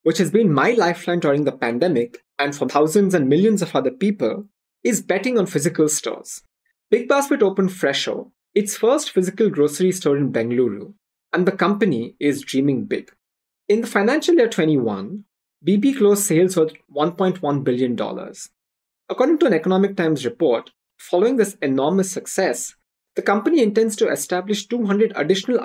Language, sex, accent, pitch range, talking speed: English, male, Indian, 140-205 Hz, 155 wpm